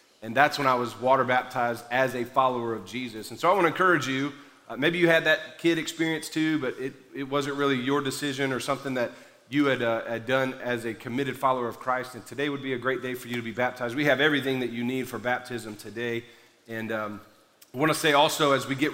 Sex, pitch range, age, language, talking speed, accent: male, 120-145 Hz, 40-59, English, 245 wpm, American